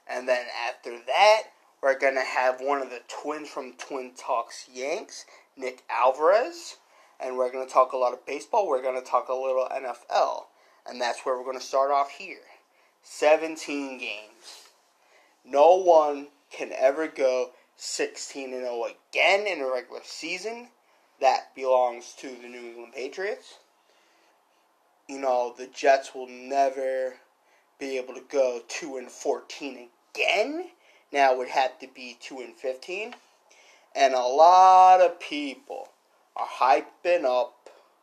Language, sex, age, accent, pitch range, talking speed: English, male, 30-49, American, 130-170 Hz, 150 wpm